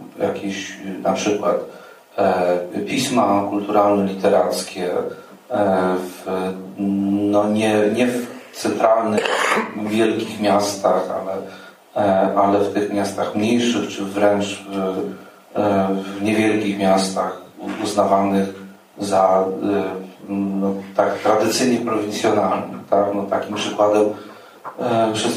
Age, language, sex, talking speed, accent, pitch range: 40-59, Polish, male, 75 wpm, native, 100-115 Hz